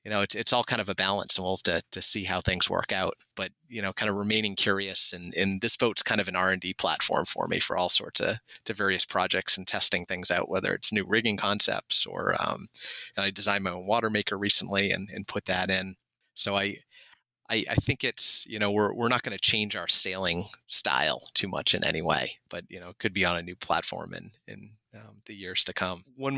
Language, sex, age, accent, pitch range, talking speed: English, male, 30-49, American, 95-110 Hz, 250 wpm